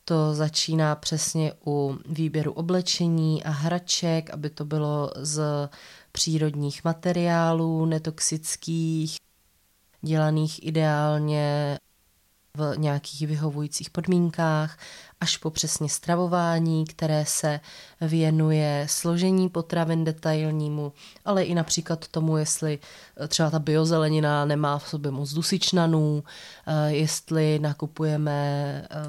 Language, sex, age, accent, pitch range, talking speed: Czech, female, 20-39, native, 150-175 Hz, 95 wpm